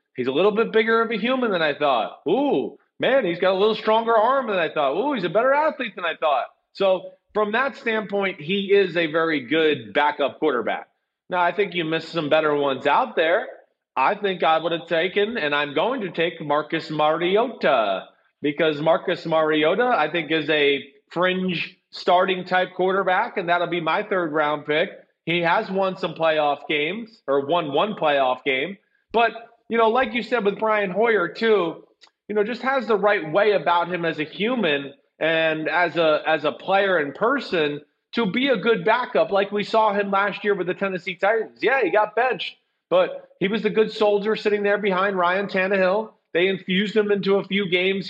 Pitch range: 165-210 Hz